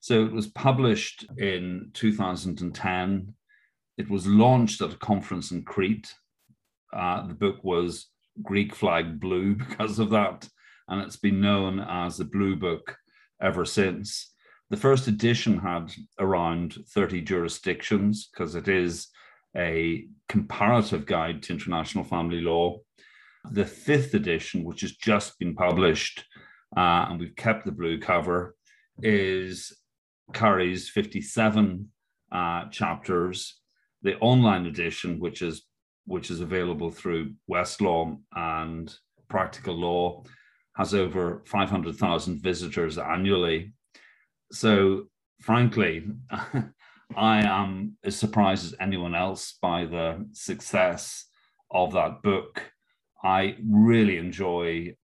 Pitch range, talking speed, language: 85-105 Hz, 120 wpm, English